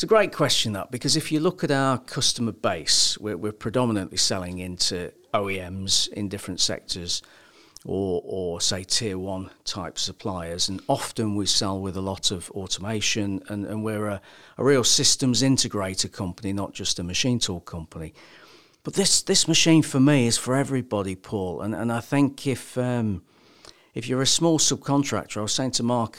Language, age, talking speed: English, 50-69, 180 wpm